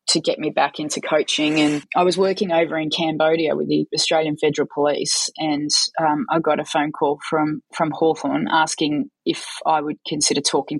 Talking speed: 190 wpm